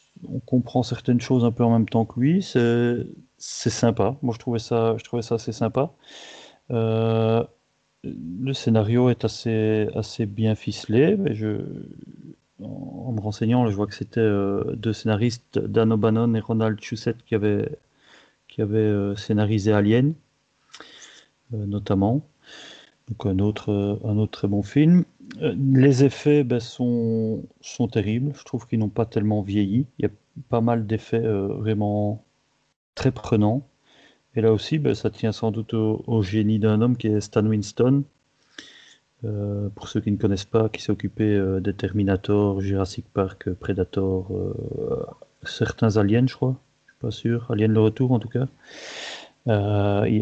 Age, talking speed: 30-49, 165 wpm